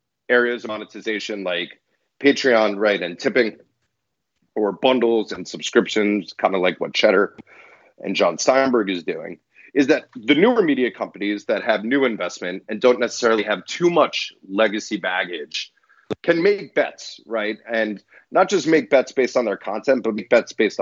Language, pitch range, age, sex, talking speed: English, 105-130 Hz, 30-49, male, 165 wpm